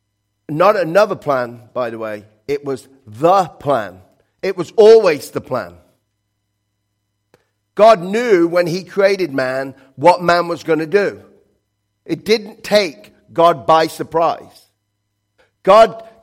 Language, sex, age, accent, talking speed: English, male, 50-69, British, 125 wpm